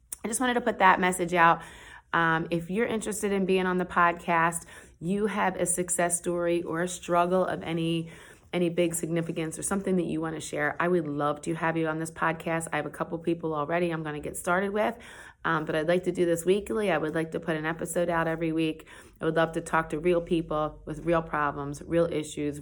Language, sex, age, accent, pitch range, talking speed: English, female, 30-49, American, 155-180 Hz, 235 wpm